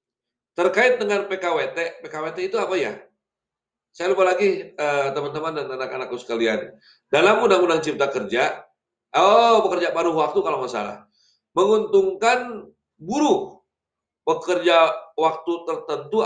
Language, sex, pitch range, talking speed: Indonesian, male, 145-240 Hz, 115 wpm